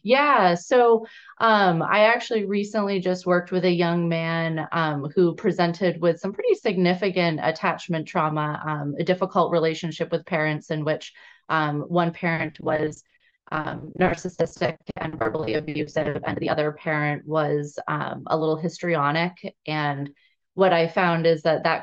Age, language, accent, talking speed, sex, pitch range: 30-49, English, American, 150 wpm, female, 150-180 Hz